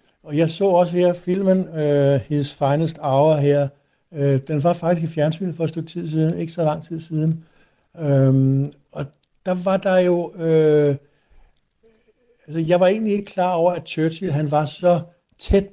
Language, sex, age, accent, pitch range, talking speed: Danish, male, 60-79, native, 140-165 Hz, 180 wpm